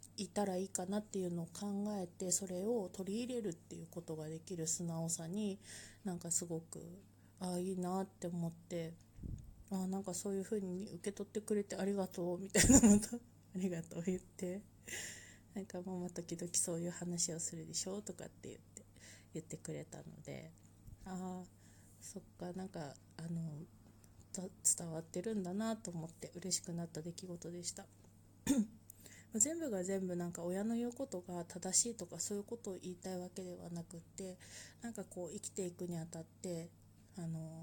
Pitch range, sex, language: 160-190 Hz, female, Japanese